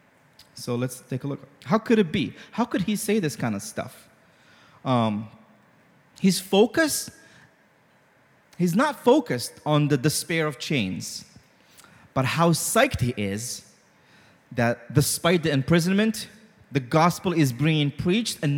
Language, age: English, 30-49